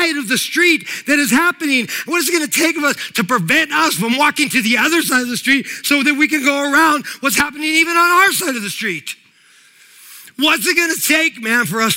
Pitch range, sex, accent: 215-285 Hz, male, American